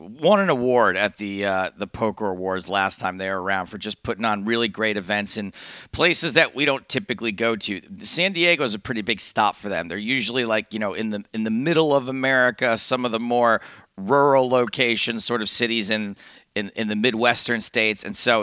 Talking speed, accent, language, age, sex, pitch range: 220 wpm, American, English, 40-59, male, 105-130 Hz